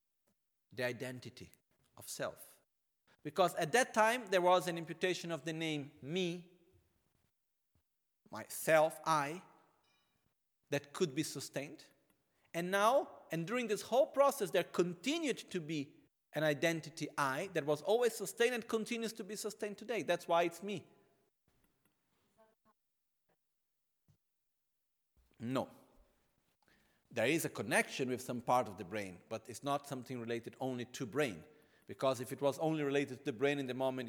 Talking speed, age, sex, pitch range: 145 wpm, 40-59, male, 125-185 Hz